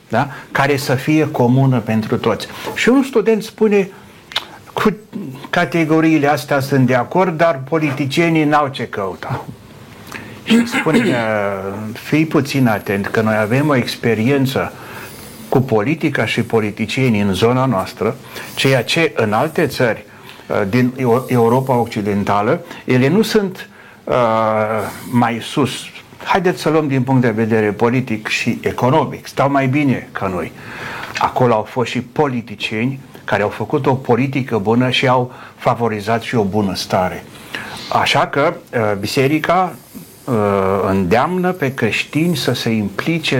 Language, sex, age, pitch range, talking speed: Romanian, male, 60-79, 110-150 Hz, 130 wpm